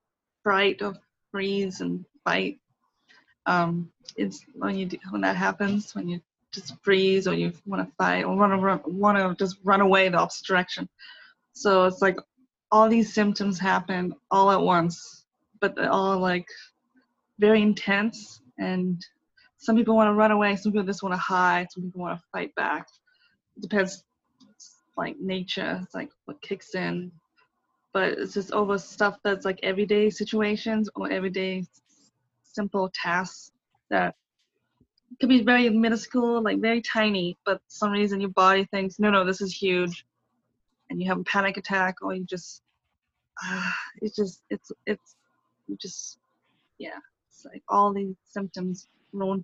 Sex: female